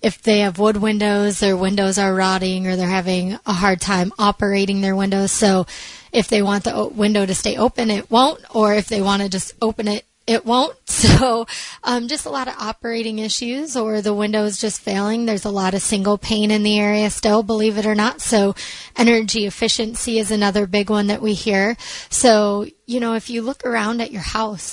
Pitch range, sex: 200-230 Hz, female